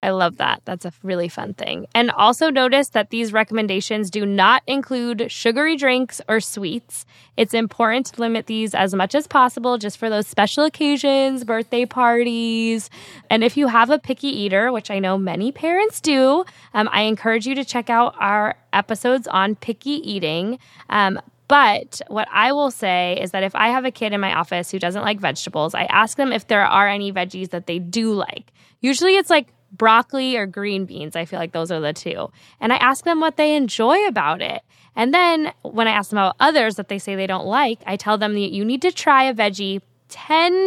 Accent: American